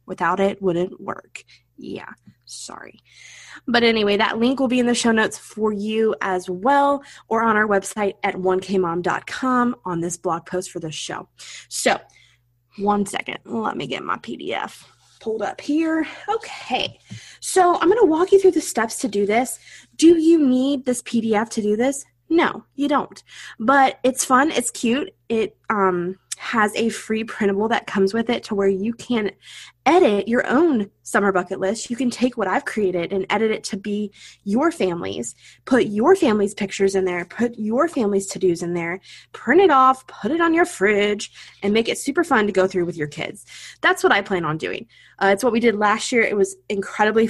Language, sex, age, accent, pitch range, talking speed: English, female, 20-39, American, 195-250 Hz, 195 wpm